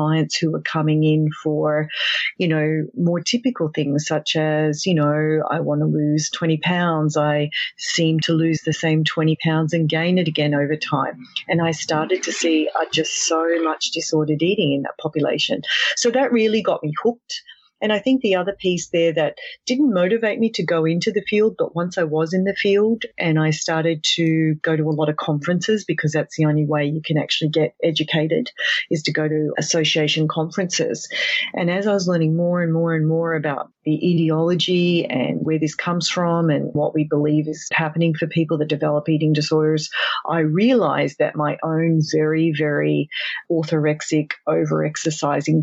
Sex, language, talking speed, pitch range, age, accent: female, English, 190 wpm, 155-175 Hz, 40-59, Australian